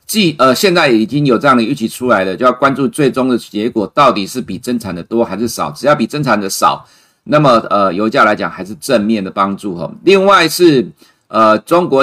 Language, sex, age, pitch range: Chinese, male, 50-69, 110-140 Hz